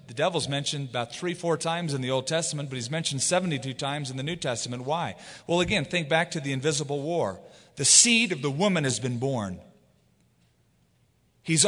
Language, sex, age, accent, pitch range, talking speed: English, male, 40-59, American, 125-175 Hz, 195 wpm